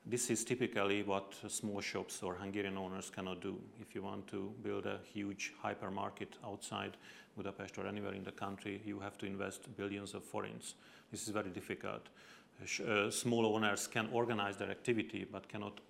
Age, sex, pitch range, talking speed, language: 40-59, male, 100-110 Hz, 175 wpm, English